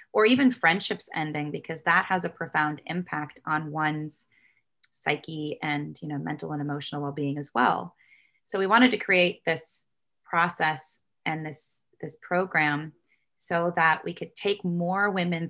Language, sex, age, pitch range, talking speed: English, female, 20-39, 150-180 Hz, 155 wpm